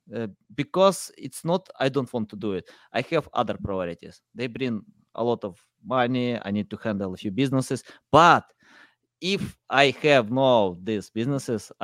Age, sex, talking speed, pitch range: 20-39, male, 175 wpm, 105-135 Hz